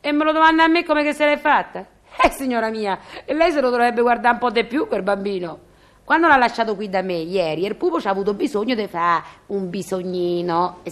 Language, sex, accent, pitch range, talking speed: Italian, female, native, 215-310 Hz, 235 wpm